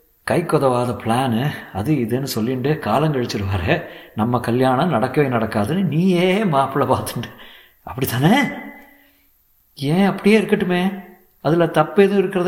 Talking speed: 110 wpm